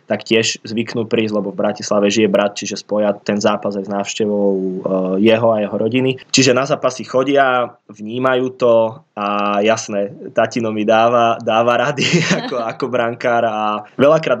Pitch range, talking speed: 105-115 Hz, 150 wpm